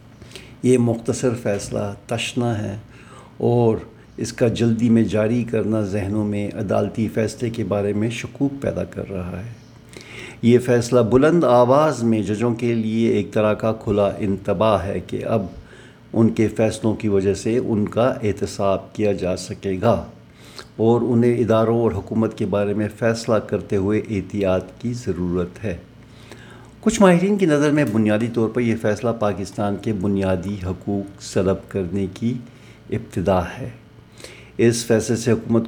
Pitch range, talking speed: 100-120 Hz, 155 wpm